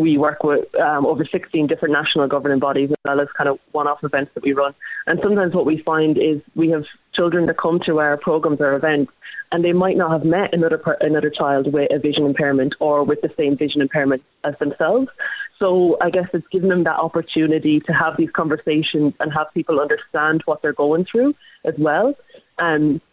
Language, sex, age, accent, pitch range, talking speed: English, female, 20-39, Irish, 150-175 Hz, 210 wpm